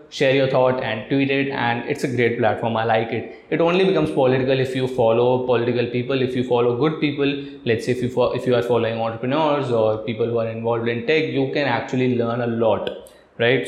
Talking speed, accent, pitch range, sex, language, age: 230 wpm, native, 115-135 Hz, male, Hindi, 20-39